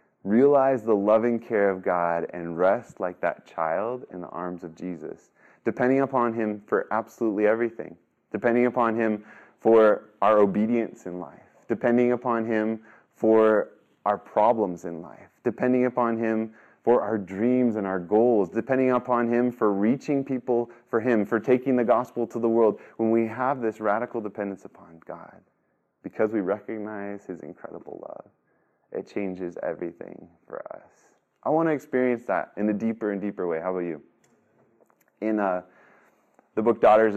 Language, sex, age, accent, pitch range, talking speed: English, male, 20-39, American, 95-120 Hz, 160 wpm